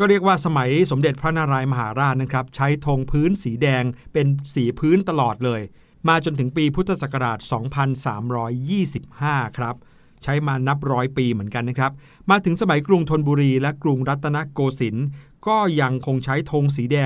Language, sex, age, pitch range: Thai, male, 60-79, 130-165 Hz